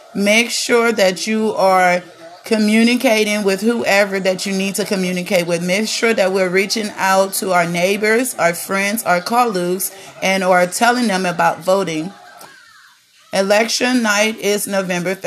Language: English